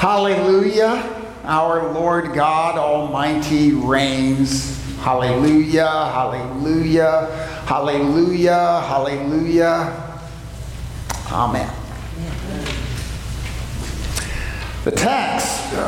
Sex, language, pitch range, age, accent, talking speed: male, English, 145-185 Hz, 50-69, American, 50 wpm